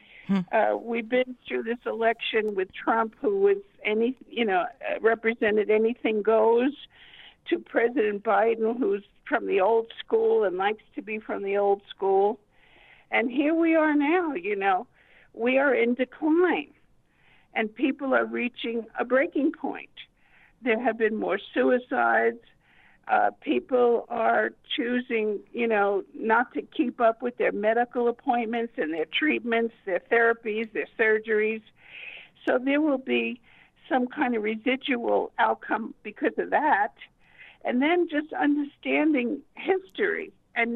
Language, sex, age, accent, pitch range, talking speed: English, female, 60-79, American, 220-305 Hz, 140 wpm